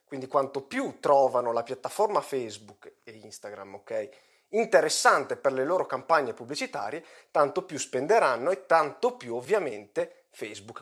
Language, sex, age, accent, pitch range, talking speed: Italian, male, 30-49, native, 130-210 Hz, 130 wpm